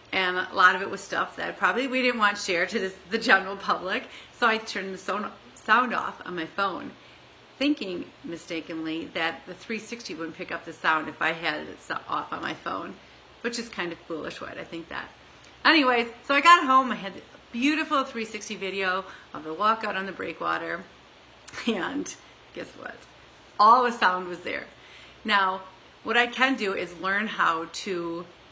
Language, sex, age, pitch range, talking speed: English, female, 40-59, 180-250 Hz, 185 wpm